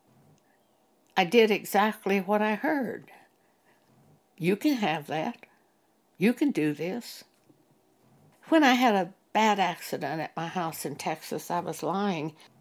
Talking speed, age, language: 135 wpm, 60-79, English